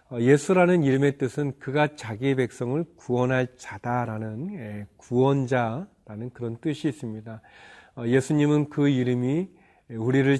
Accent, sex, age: native, male, 40-59